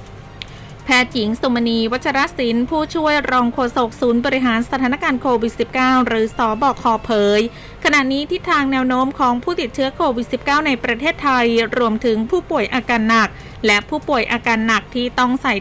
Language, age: Thai, 20-39